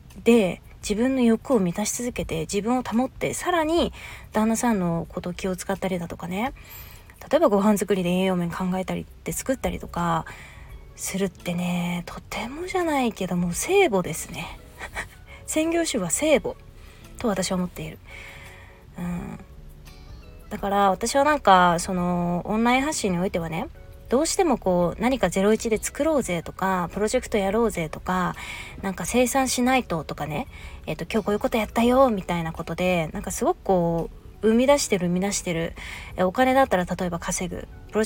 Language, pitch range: Japanese, 175-230 Hz